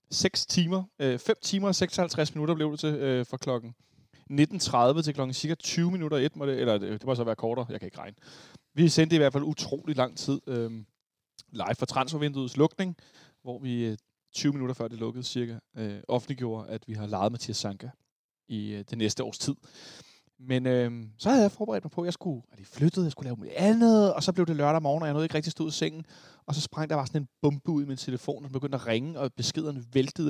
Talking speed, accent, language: 235 wpm, native, Danish